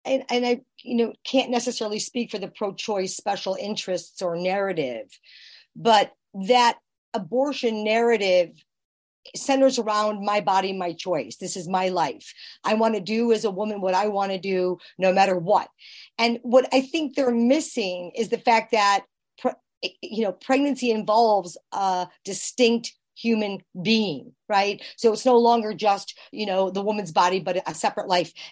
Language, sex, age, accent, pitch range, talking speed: English, female, 50-69, American, 205-255 Hz, 165 wpm